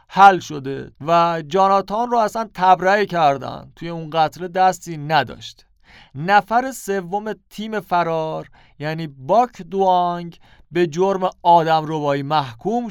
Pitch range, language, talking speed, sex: 145-185 Hz, Persian, 115 wpm, male